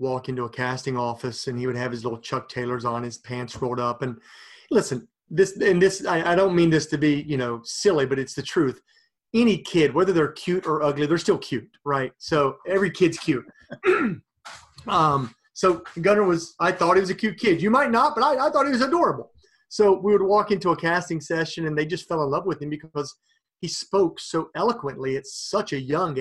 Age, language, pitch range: 30-49, English, 135-195 Hz